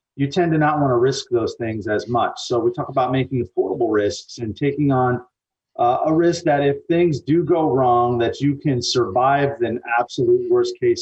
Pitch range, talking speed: 125-160 Hz, 205 wpm